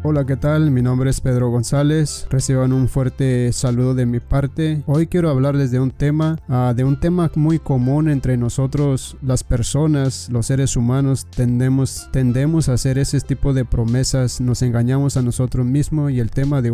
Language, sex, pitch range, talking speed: Spanish, male, 125-145 Hz, 180 wpm